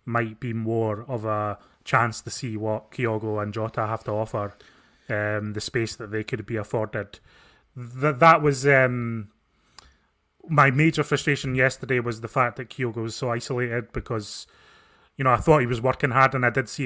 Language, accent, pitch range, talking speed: English, British, 110-130 Hz, 185 wpm